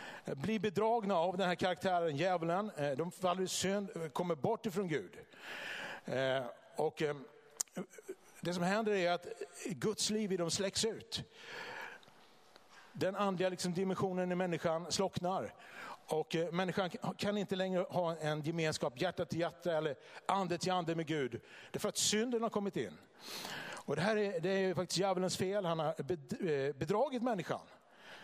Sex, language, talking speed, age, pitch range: male, Swedish, 155 wpm, 60-79, 170-200 Hz